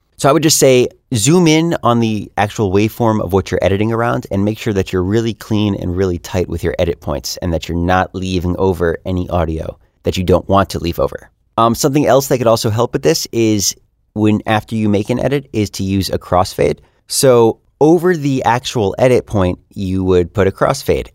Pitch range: 95-125 Hz